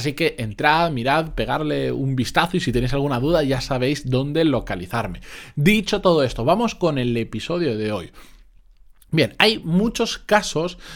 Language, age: Spanish, 20-39